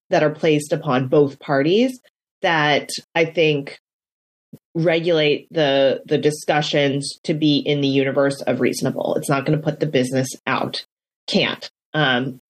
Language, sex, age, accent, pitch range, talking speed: English, female, 30-49, American, 150-200 Hz, 145 wpm